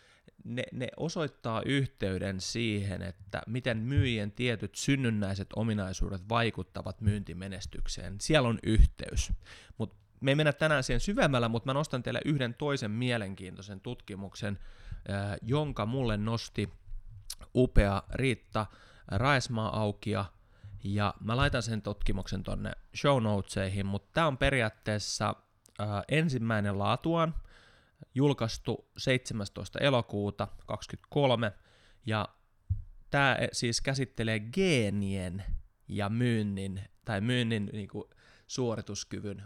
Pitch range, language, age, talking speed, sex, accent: 100-125 Hz, Finnish, 20-39, 105 wpm, male, native